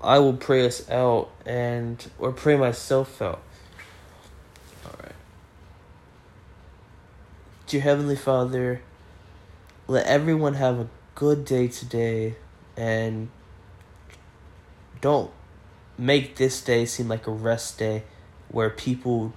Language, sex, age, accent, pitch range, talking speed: English, male, 10-29, American, 90-120 Hz, 100 wpm